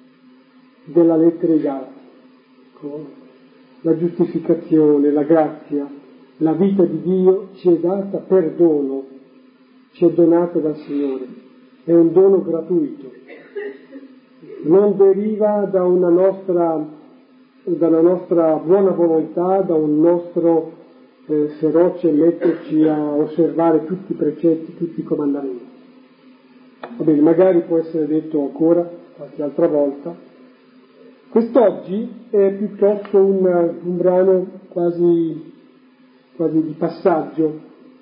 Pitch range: 160-220 Hz